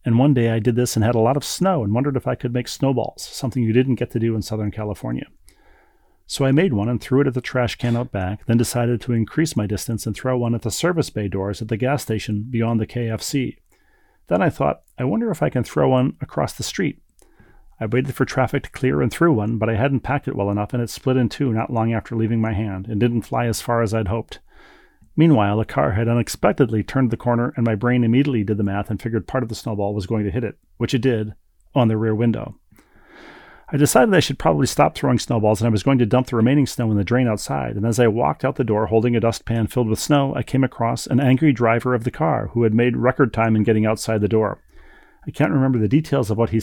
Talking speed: 265 wpm